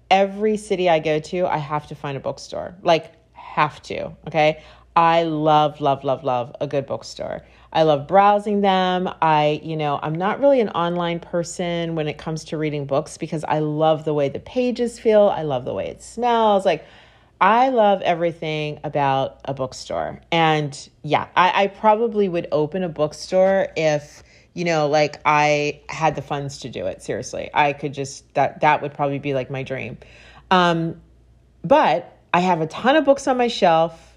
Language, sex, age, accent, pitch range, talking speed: English, female, 30-49, American, 145-190 Hz, 185 wpm